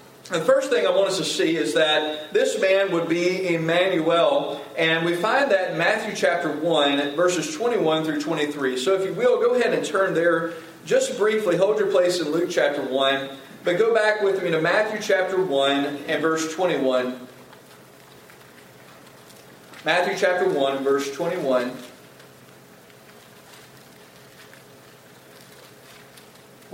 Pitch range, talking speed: 140-195 Hz, 140 wpm